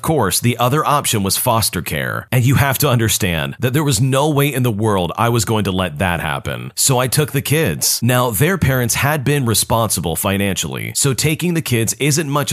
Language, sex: English, male